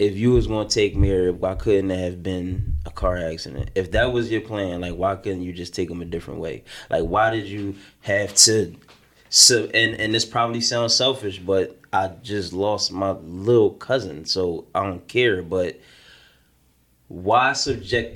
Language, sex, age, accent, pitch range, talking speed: English, male, 20-39, American, 90-105 Hz, 185 wpm